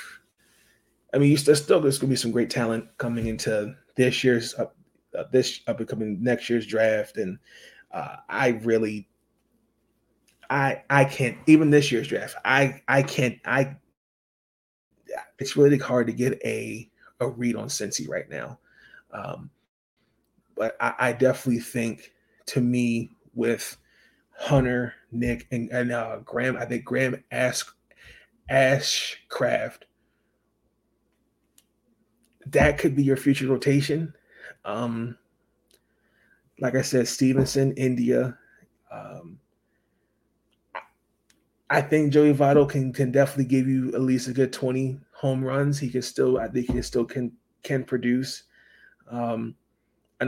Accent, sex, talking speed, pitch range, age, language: American, male, 135 wpm, 120-135 Hz, 30-49, English